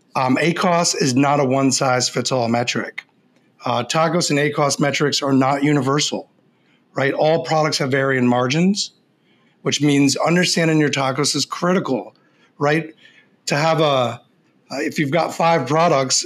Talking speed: 135 wpm